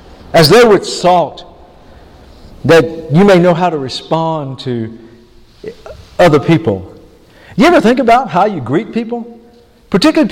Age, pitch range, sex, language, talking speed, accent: 50-69, 175-240 Hz, male, English, 135 wpm, American